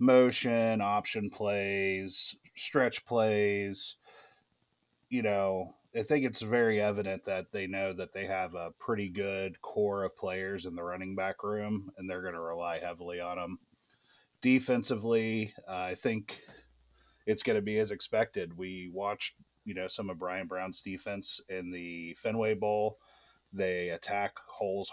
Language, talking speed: English, 150 wpm